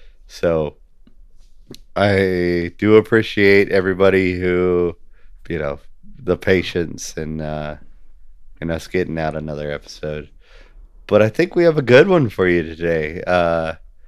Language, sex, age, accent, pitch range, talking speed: English, male, 30-49, American, 80-105 Hz, 125 wpm